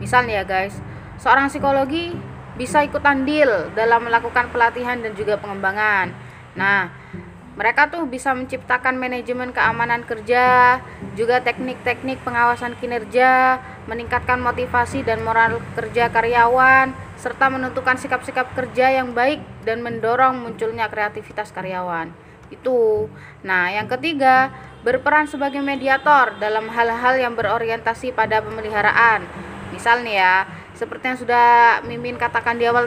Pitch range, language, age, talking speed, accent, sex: 220-260 Hz, Indonesian, 20-39, 120 wpm, native, female